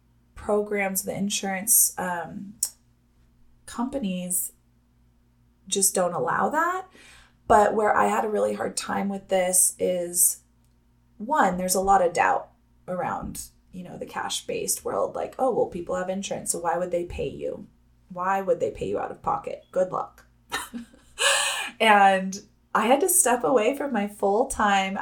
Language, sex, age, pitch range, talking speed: English, female, 20-39, 180-235 Hz, 150 wpm